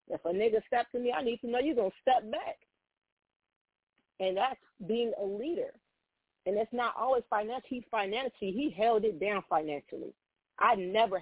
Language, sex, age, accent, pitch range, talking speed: English, female, 40-59, American, 195-260 Hz, 175 wpm